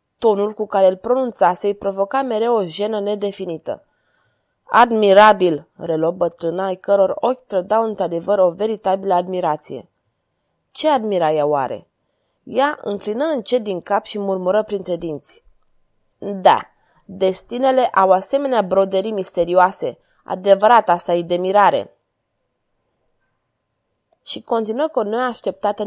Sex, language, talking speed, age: female, Romanian, 115 wpm, 20-39